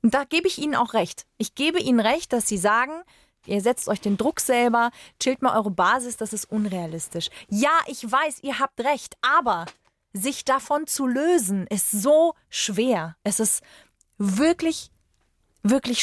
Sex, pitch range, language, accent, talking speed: female, 210-275 Hz, German, German, 170 wpm